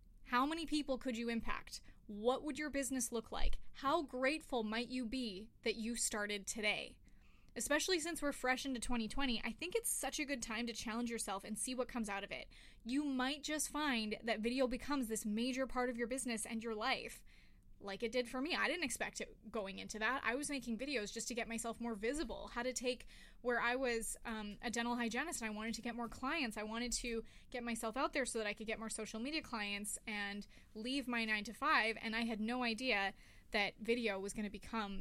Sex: female